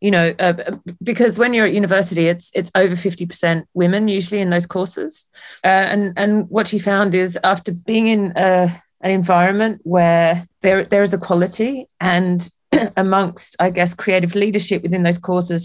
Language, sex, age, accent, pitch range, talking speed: English, female, 30-49, British, 175-195 Hz, 170 wpm